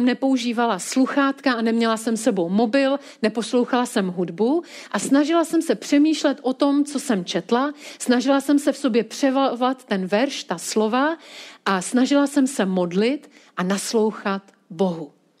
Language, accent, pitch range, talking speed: Czech, native, 220-275 Hz, 150 wpm